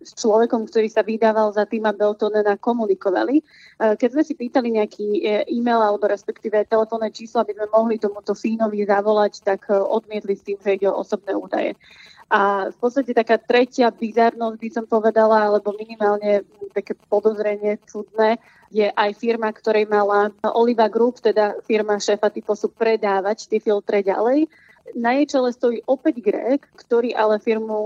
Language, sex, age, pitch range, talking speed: Slovak, female, 20-39, 205-230 Hz, 155 wpm